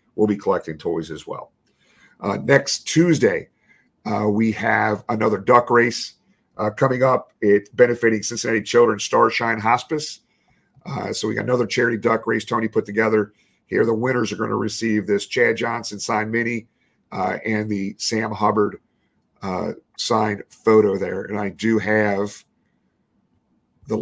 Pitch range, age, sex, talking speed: 105-120 Hz, 50-69, male, 150 wpm